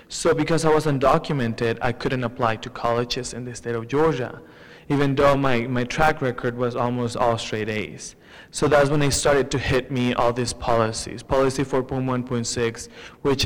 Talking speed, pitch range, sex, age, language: 205 wpm, 115-130 Hz, male, 20-39, English